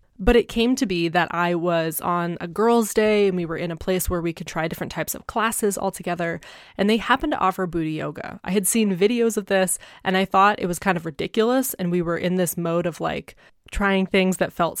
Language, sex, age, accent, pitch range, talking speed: English, female, 20-39, American, 175-220 Hz, 245 wpm